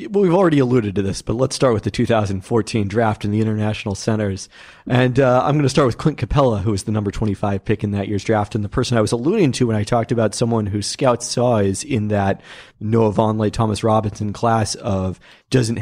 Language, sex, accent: English, male, American